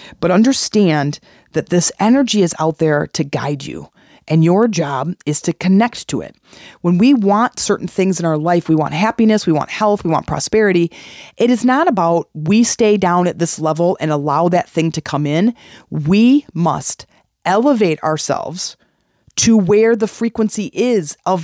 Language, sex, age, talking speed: English, female, 30-49, 175 wpm